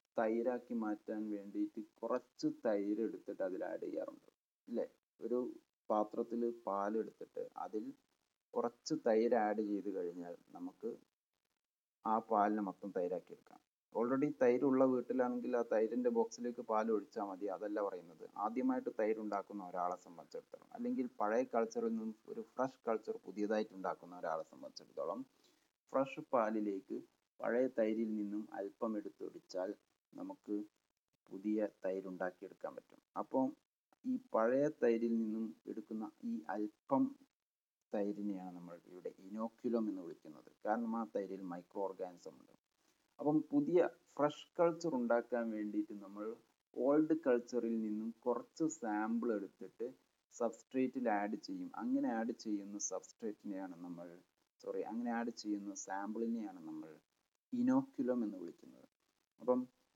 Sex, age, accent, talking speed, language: male, 30-49, Indian, 65 wpm, English